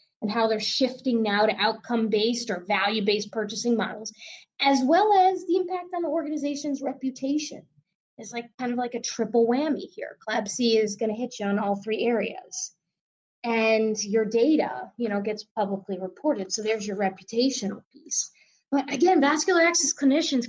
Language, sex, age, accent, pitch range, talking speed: English, female, 20-39, American, 210-285 Hz, 175 wpm